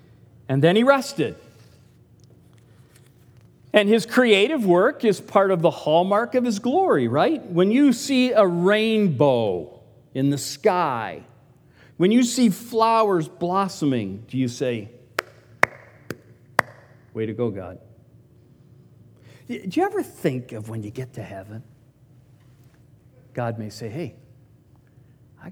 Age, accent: 50-69, American